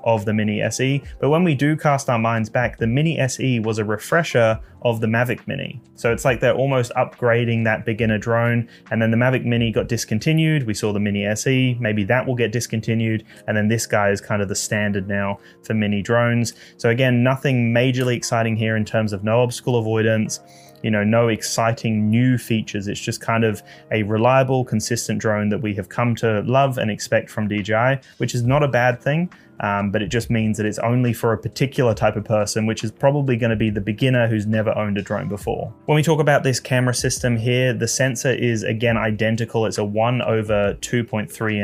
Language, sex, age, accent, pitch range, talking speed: English, male, 20-39, Australian, 110-125 Hz, 215 wpm